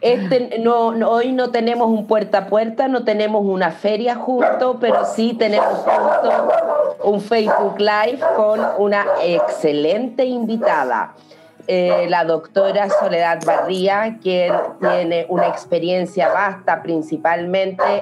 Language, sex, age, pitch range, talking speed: Spanish, female, 30-49, 170-220 Hz, 125 wpm